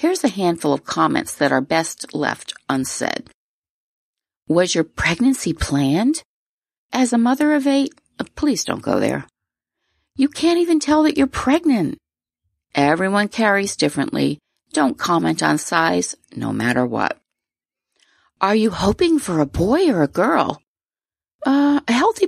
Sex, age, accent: female, 40-59, American